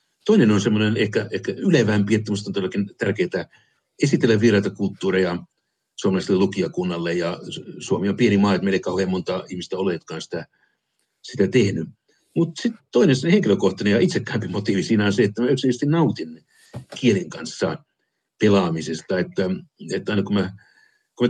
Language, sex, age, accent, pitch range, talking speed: Finnish, male, 60-79, native, 95-130 Hz, 150 wpm